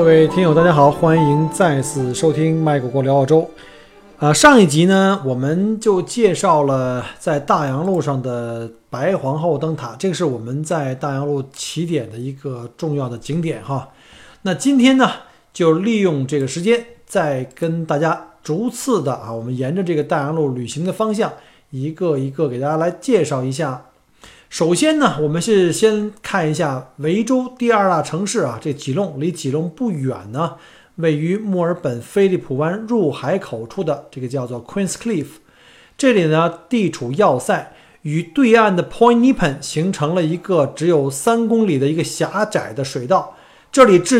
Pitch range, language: 140-185 Hz, Chinese